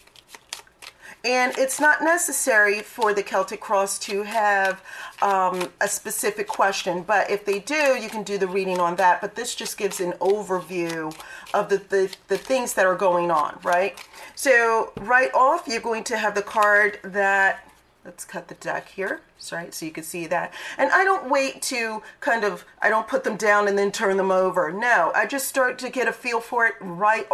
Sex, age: female, 40-59